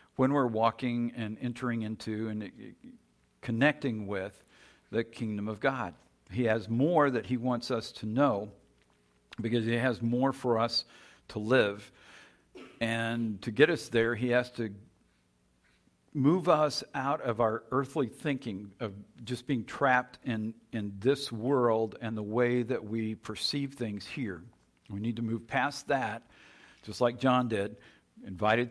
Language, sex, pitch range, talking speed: English, male, 105-130 Hz, 150 wpm